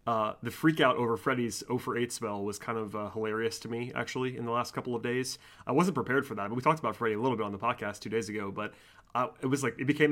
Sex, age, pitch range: male, 30-49, 110-130 Hz